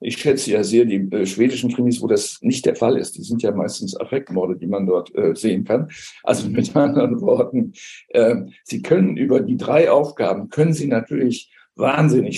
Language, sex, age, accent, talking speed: German, male, 60-79, German, 195 wpm